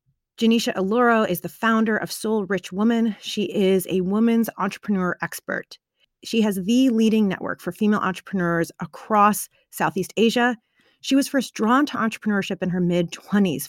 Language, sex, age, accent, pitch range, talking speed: English, female, 30-49, American, 185-225 Hz, 155 wpm